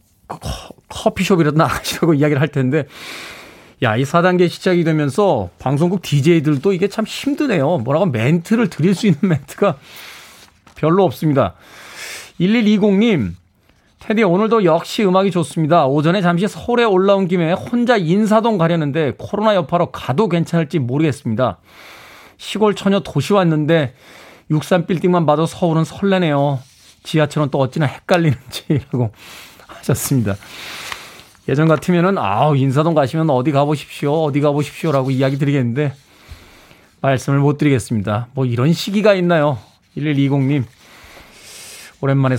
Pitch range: 130-175 Hz